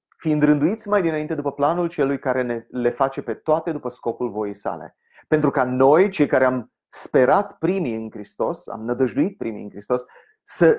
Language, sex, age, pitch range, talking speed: Romanian, male, 30-49, 120-175 Hz, 185 wpm